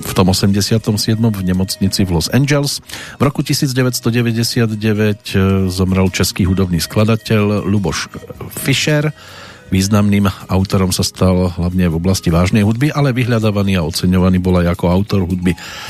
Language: Slovak